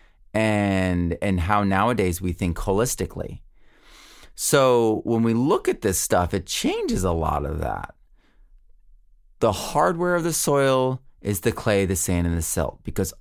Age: 30-49